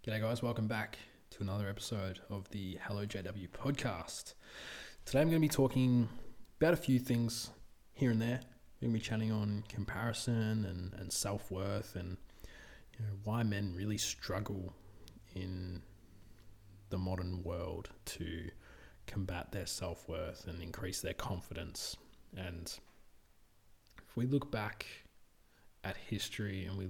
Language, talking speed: English, 135 wpm